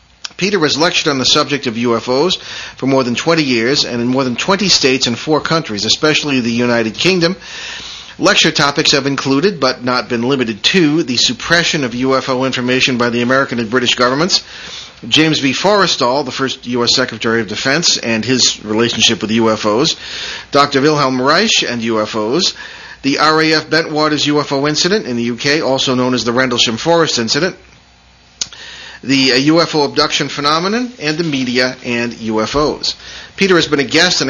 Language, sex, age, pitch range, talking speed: English, male, 40-59, 125-160 Hz, 165 wpm